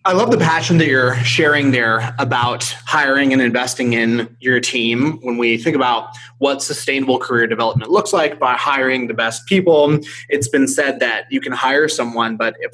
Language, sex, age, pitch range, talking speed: English, male, 20-39, 115-140 Hz, 190 wpm